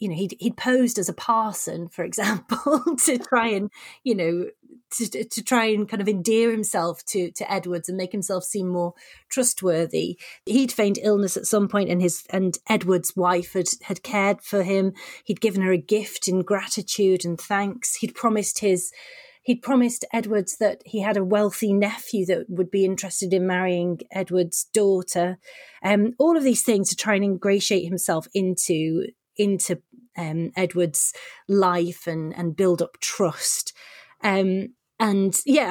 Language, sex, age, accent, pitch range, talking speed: English, female, 30-49, British, 180-225 Hz, 165 wpm